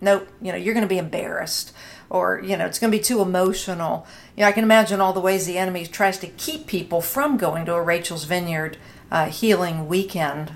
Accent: American